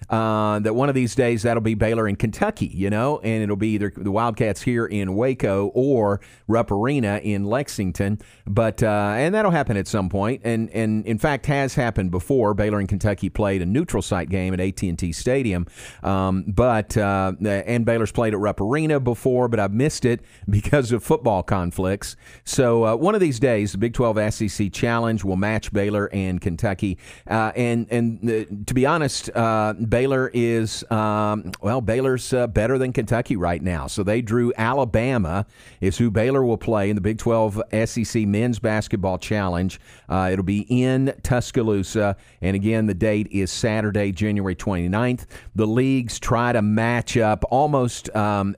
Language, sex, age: English, male, 40-59